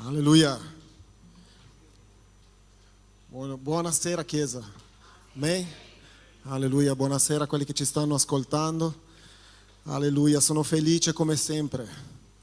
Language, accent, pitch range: Italian, native, 105-155 Hz